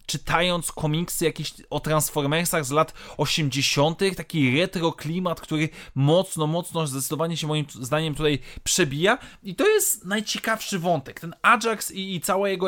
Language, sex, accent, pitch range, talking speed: Polish, male, native, 145-190 Hz, 145 wpm